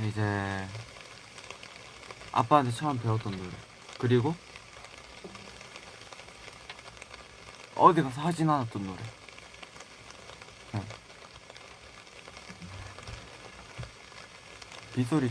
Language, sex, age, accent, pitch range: Korean, male, 20-39, native, 105-140 Hz